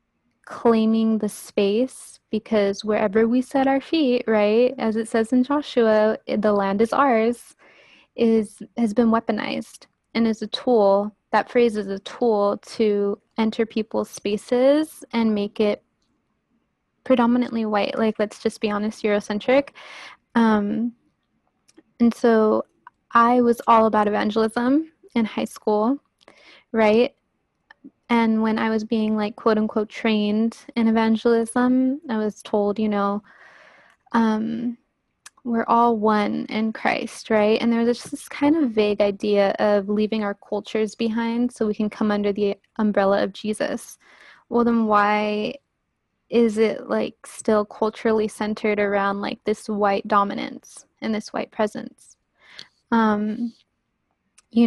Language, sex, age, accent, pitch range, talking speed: English, female, 10-29, American, 210-235 Hz, 135 wpm